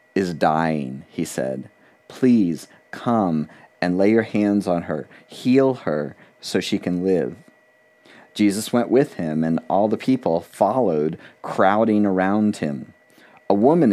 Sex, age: male, 40-59